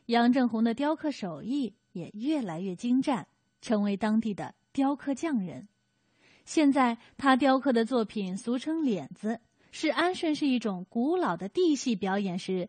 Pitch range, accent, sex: 210-275 Hz, native, female